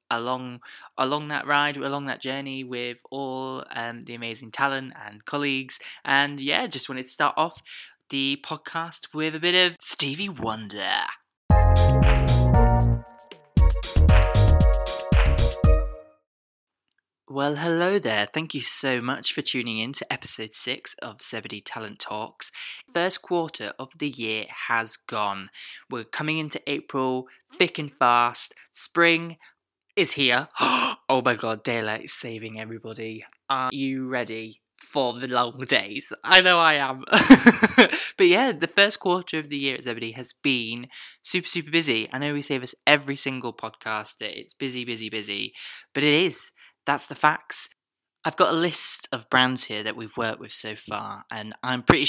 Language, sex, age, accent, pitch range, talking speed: English, male, 20-39, British, 110-145 Hz, 150 wpm